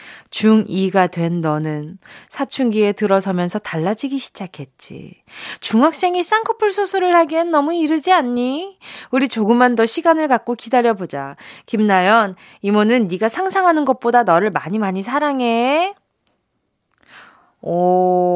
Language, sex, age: Korean, female, 20-39